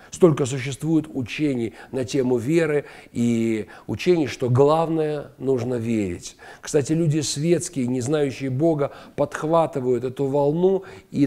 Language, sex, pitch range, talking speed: Russian, male, 130-165 Hz, 115 wpm